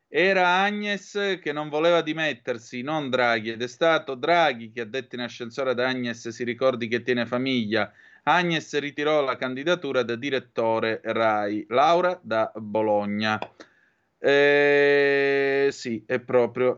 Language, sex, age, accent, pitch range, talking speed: Italian, male, 30-49, native, 105-130 Hz, 135 wpm